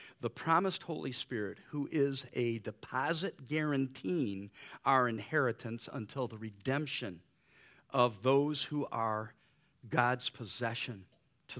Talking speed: 110 wpm